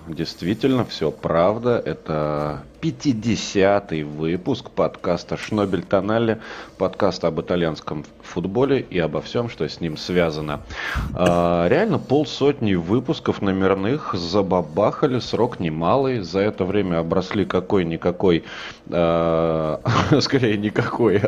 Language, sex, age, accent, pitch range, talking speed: Russian, male, 30-49, native, 85-110 Hz, 95 wpm